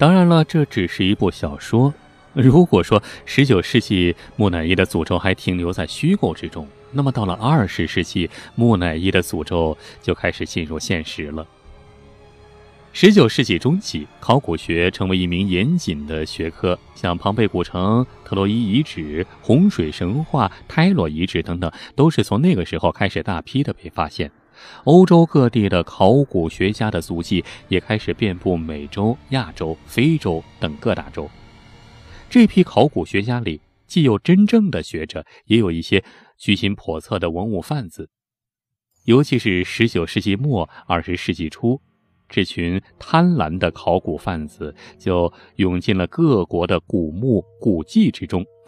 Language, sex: Chinese, male